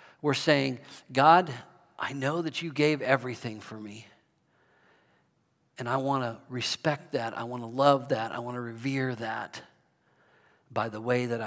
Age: 50-69